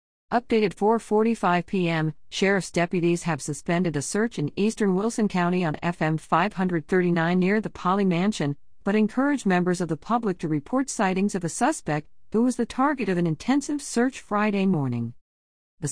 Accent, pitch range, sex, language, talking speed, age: American, 145-195 Hz, female, English, 160 wpm, 50-69